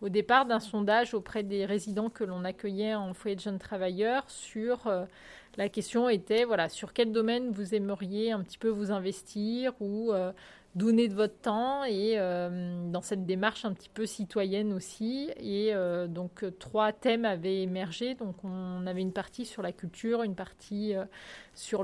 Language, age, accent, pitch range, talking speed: French, 30-49, French, 190-225 Hz, 180 wpm